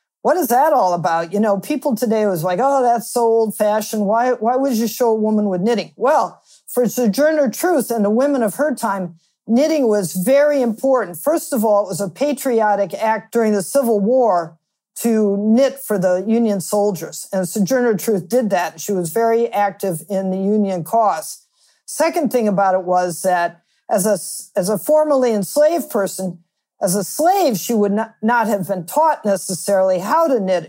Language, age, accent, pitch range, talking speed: English, 50-69, American, 200-280 Hz, 190 wpm